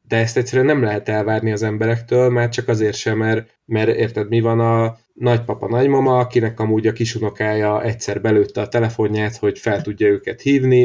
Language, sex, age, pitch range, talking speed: Hungarian, male, 30-49, 105-120 Hz, 185 wpm